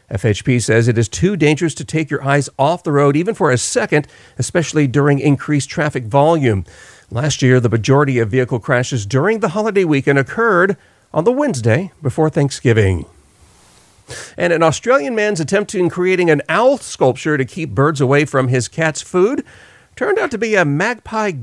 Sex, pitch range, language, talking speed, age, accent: male, 130-165 Hz, English, 175 wpm, 40-59, American